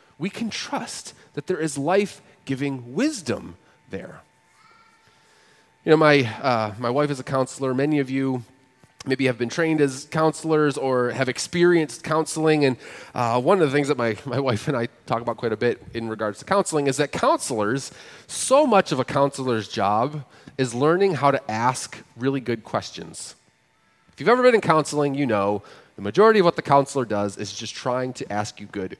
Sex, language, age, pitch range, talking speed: male, English, 30-49, 125-165 Hz, 185 wpm